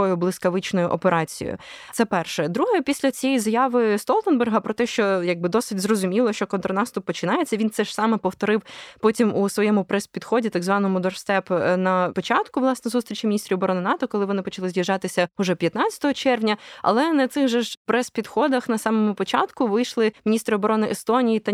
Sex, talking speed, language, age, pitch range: female, 160 wpm, Ukrainian, 20-39, 195-235 Hz